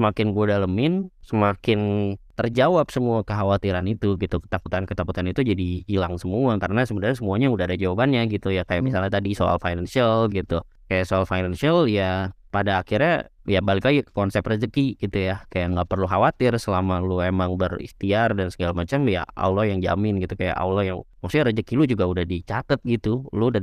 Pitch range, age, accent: 95-115 Hz, 20-39, native